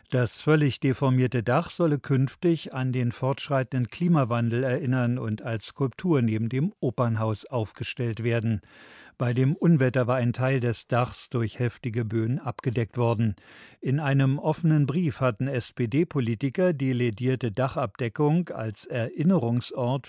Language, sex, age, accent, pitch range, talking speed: German, male, 50-69, German, 115-145 Hz, 130 wpm